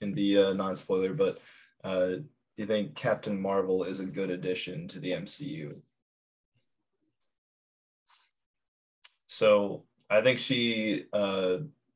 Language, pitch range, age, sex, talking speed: English, 95-110 Hz, 20-39, male, 115 wpm